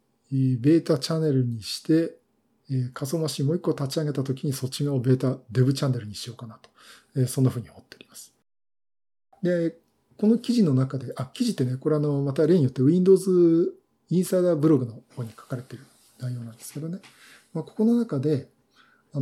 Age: 50-69